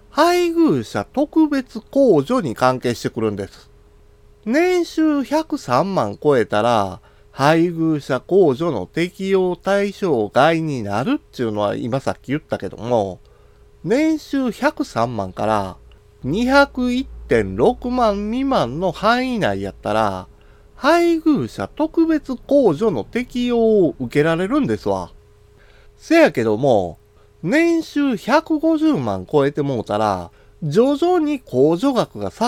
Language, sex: Japanese, male